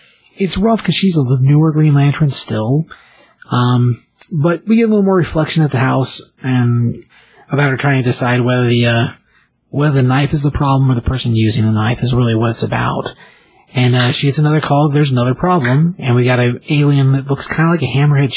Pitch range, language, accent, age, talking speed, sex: 125-155 Hz, English, American, 30-49, 220 wpm, male